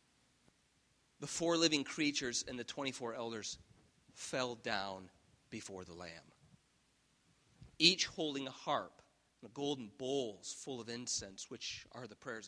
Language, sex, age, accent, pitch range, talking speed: English, male, 40-59, American, 95-135 Hz, 135 wpm